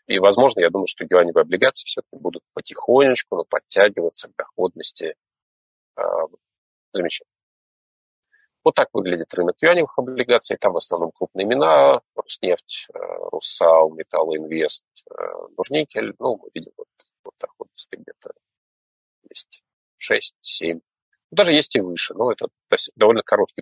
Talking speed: 125 wpm